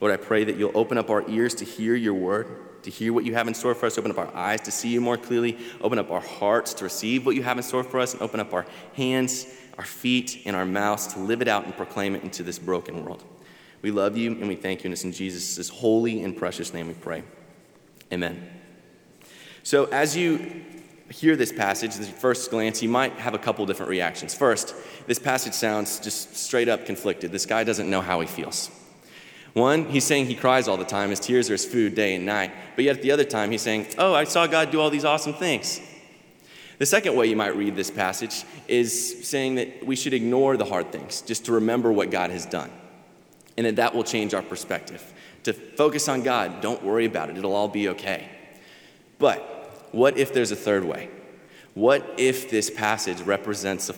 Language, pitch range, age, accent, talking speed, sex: English, 100-125 Hz, 30-49, American, 225 wpm, male